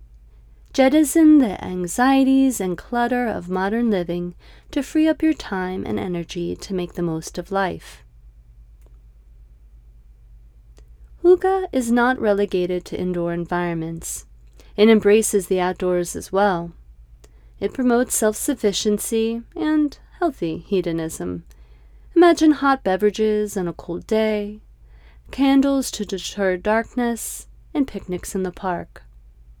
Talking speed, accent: 115 wpm, American